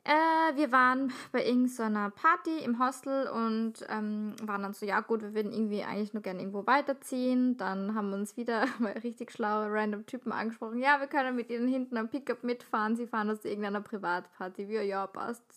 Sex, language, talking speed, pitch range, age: female, German, 195 wpm, 215-250 Hz, 20-39